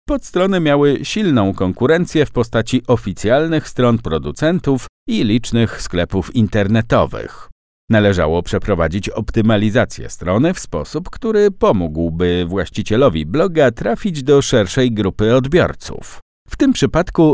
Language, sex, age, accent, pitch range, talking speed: Polish, male, 50-69, native, 100-150 Hz, 105 wpm